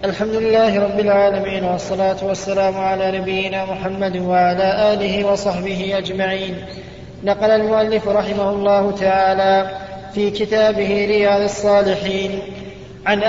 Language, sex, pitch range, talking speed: Arabic, male, 195-215 Hz, 105 wpm